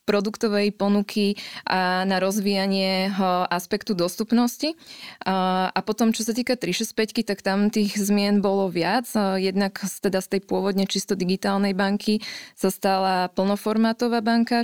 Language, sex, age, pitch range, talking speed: Slovak, female, 20-39, 190-210 Hz, 125 wpm